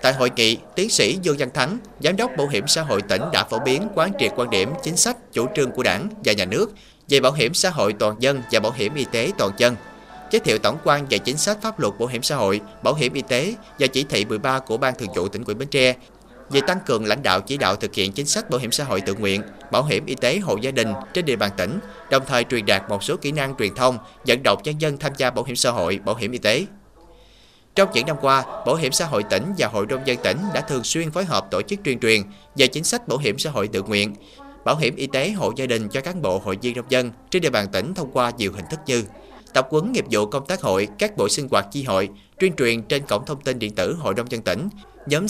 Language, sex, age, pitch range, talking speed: Vietnamese, male, 30-49, 110-150 Hz, 275 wpm